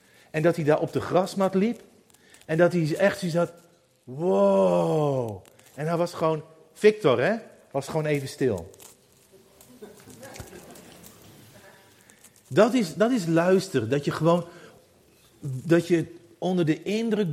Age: 40-59